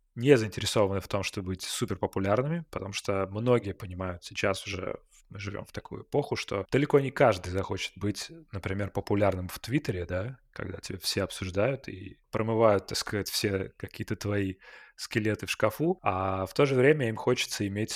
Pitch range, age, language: 95-120 Hz, 20-39, Russian